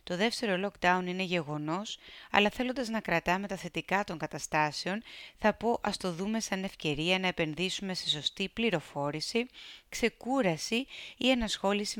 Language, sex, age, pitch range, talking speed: Greek, female, 30-49, 155-215 Hz, 140 wpm